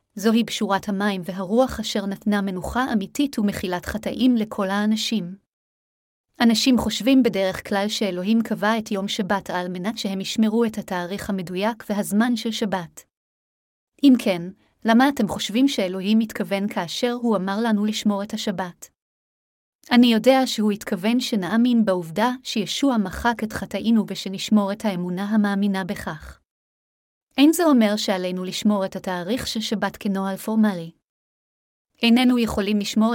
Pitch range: 195-230 Hz